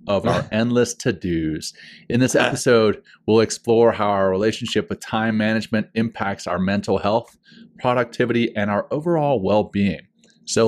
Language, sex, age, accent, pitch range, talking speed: English, male, 30-49, American, 95-115 Hz, 140 wpm